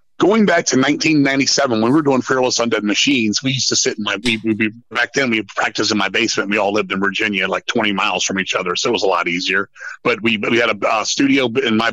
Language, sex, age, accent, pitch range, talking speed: English, male, 30-49, American, 110-140 Hz, 255 wpm